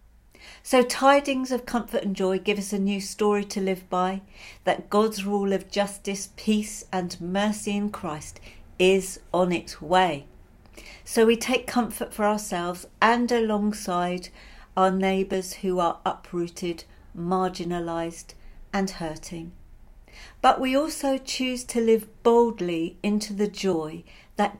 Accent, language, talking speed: British, English, 135 wpm